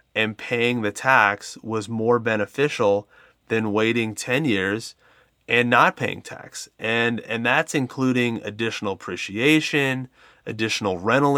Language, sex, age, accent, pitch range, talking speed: English, male, 30-49, American, 110-135 Hz, 120 wpm